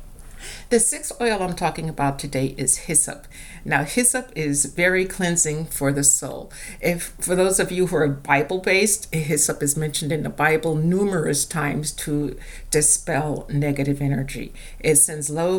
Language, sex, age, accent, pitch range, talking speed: English, female, 60-79, American, 150-185 Hz, 160 wpm